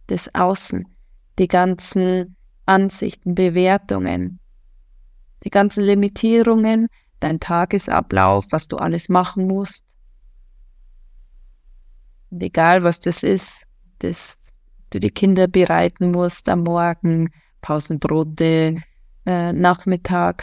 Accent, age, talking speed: German, 20-39, 90 wpm